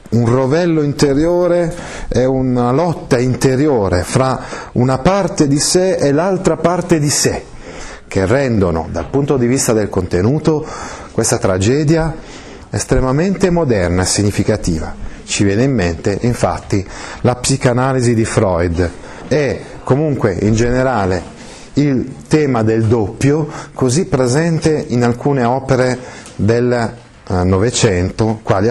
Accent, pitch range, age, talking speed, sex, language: native, 105-140 Hz, 40-59, 115 wpm, male, Italian